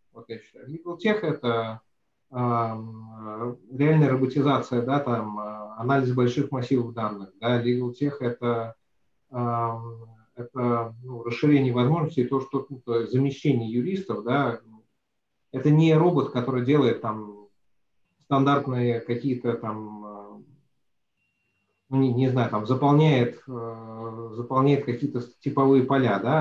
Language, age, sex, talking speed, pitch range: Russian, 30-49, male, 100 wpm, 115-135 Hz